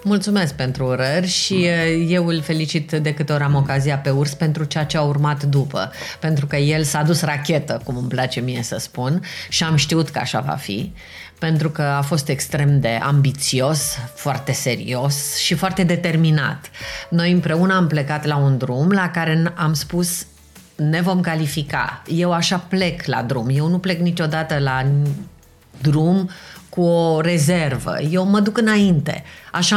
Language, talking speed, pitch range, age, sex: Romanian, 170 wpm, 140-175 Hz, 30-49, female